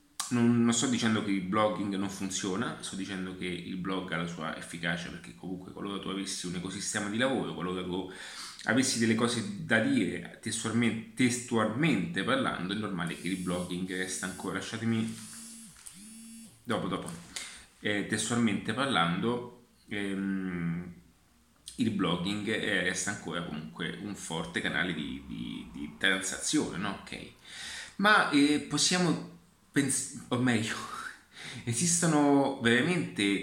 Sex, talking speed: male, 125 wpm